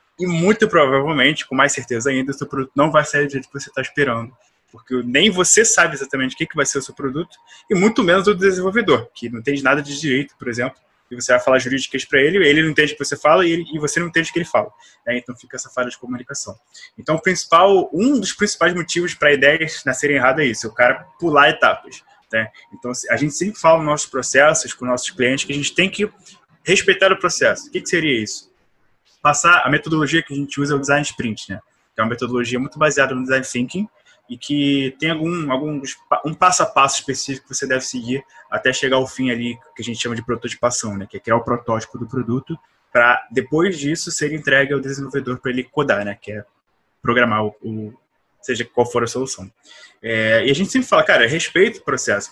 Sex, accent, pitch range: male, Brazilian, 125-165 Hz